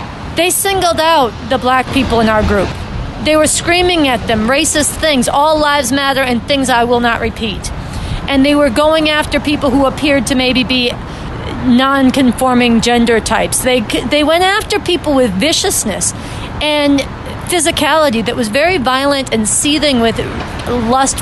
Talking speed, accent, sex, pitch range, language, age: 160 wpm, American, female, 240-295 Hz, English, 40-59